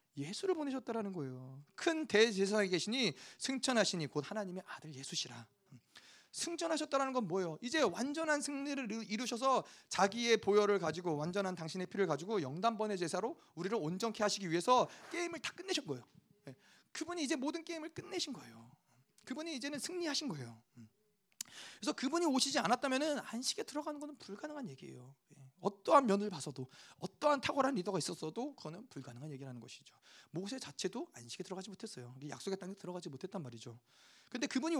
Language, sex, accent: Korean, male, native